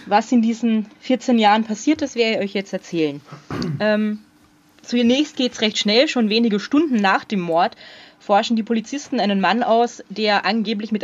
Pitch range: 185-225 Hz